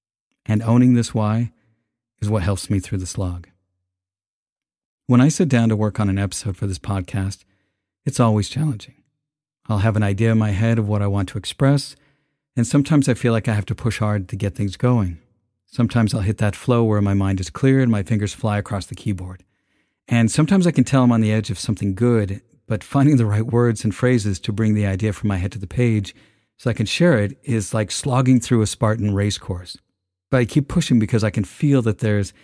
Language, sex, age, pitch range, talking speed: English, male, 50-69, 100-125 Hz, 225 wpm